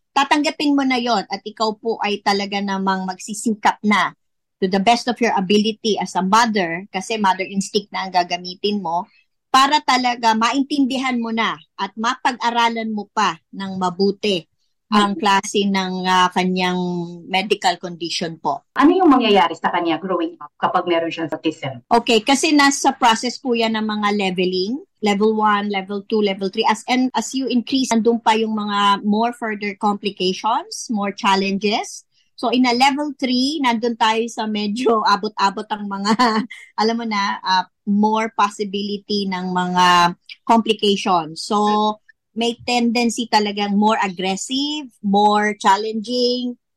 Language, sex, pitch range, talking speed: Filipino, male, 195-235 Hz, 150 wpm